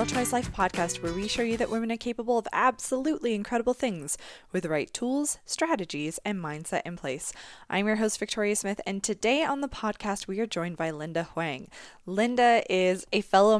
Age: 20-39